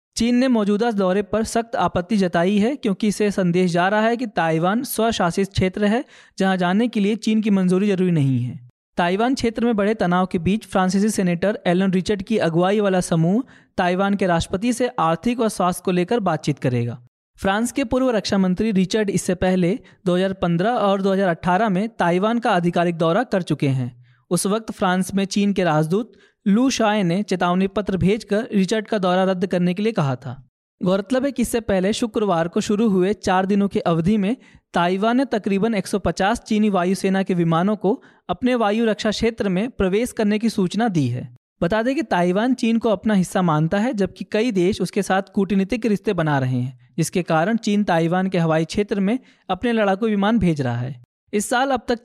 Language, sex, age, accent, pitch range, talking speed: Hindi, male, 20-39, native, 180-220 Hz, 195 wpm